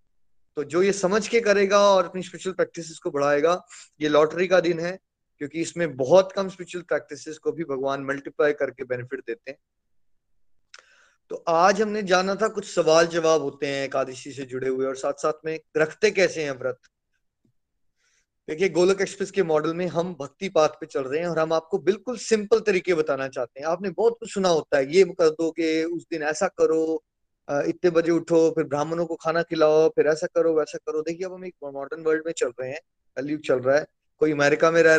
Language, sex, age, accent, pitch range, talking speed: Hindi, male, 20-39, native, 155-195 Hz, 205 wpm